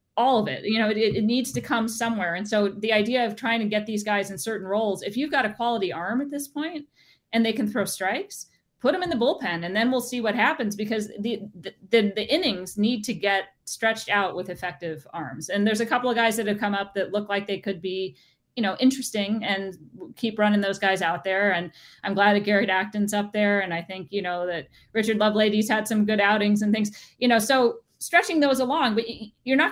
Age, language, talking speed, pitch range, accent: 40-59, English, 240 wpm, 185-225 Hz, American